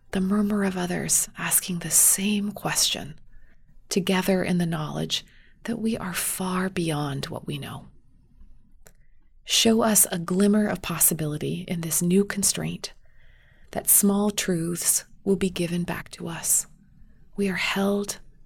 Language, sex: English, female